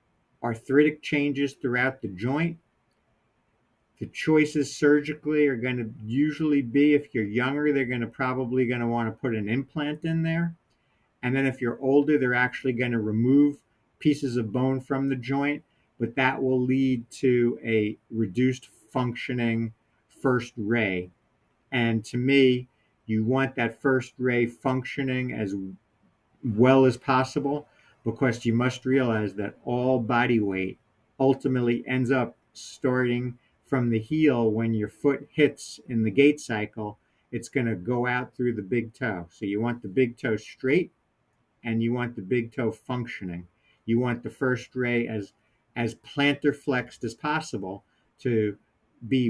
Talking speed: 155 wpm